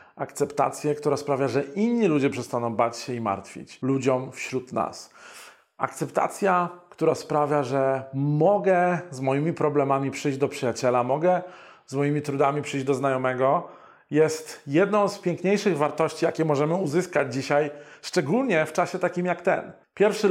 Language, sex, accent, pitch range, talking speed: Polish, male, native, 140-170 Hz, 140 wpm